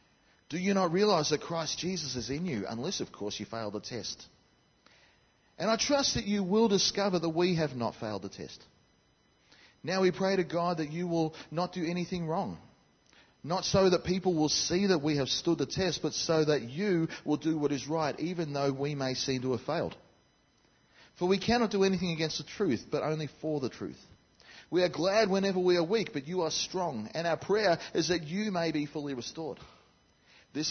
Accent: Australian